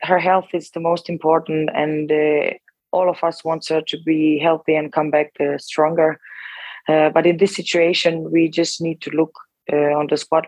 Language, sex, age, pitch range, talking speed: English, female, 20-39, 155-175 Hz, 200 wpm